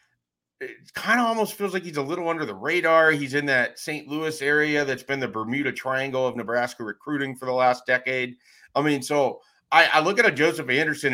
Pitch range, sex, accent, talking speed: 105-130 Hz, male, American, 215 wpm